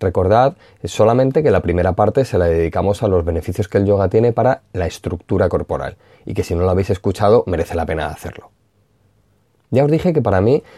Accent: Spanish